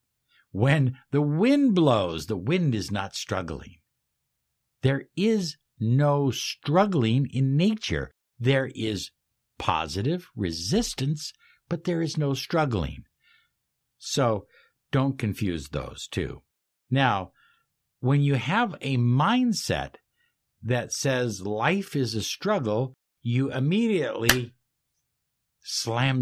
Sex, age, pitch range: male, 60-79, 110-150 Hz